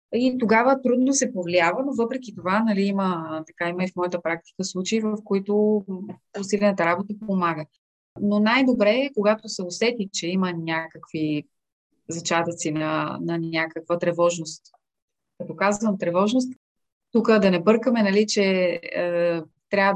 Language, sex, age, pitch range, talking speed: Bulgarian, female, 20-39, 170-210 Hz, 140 wpm